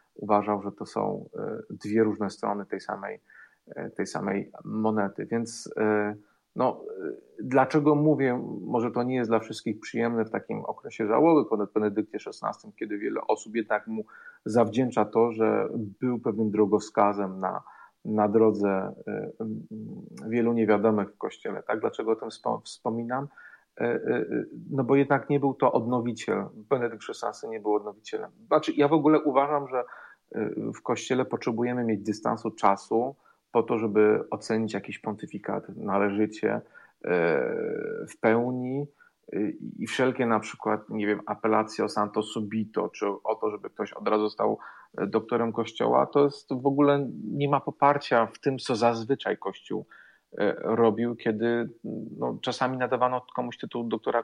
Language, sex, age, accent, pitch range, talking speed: Polish, male, 40-59, native, 110-135 Hz, 135 wpm